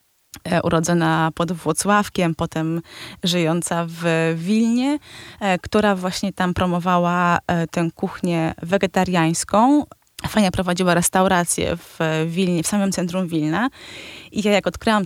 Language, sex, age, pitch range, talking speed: Polish, female, 20-39, 170-200 Hz, 110 wpm